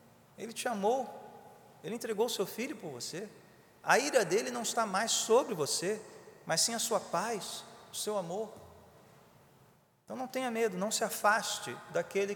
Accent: Brazilian